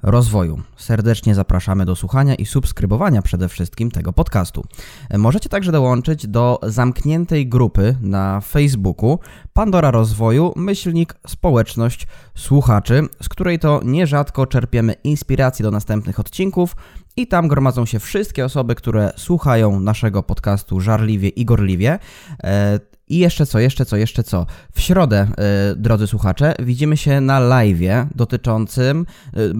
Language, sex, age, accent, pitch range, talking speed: Polish, male, 20-39, native, 105-140 Hz, 130 wpm